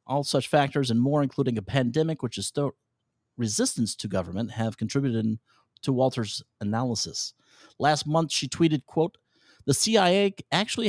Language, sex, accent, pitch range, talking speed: English, male, American, 115-160 Hz, 150 wpm